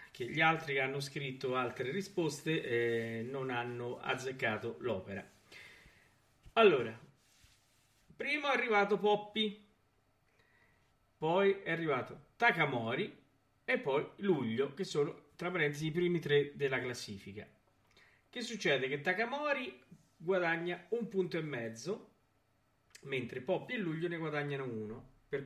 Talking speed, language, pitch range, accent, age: 120 wpm, Italian, 120-175 Hz, native, 40-59